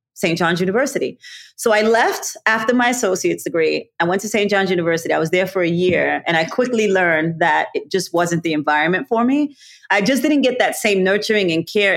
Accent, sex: American, female